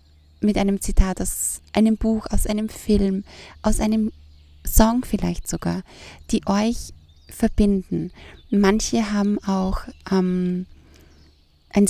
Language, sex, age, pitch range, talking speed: German, female, 20-39, 180-215 Hz, 110 wpm